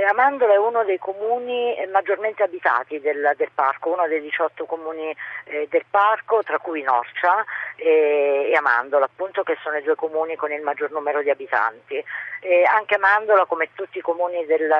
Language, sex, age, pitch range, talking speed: Italian, female, 40-59, 150-195 Hz, 170 wpm